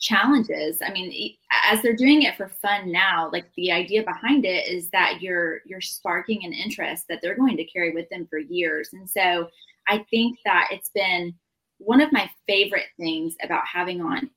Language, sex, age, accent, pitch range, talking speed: English, female, 20-39, American, 180-225 Hz, 190 wpm